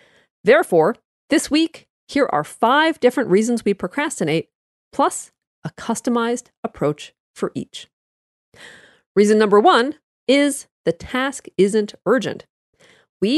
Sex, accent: female, American